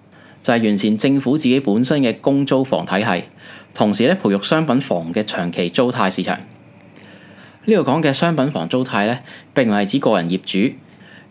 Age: 20-39